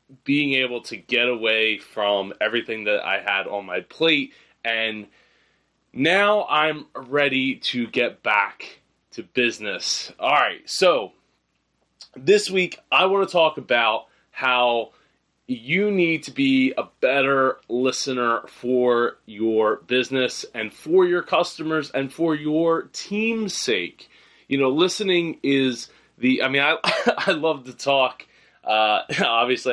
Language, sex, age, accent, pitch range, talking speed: English, male, 20-39, American, 115-155 Hz, 135 wpm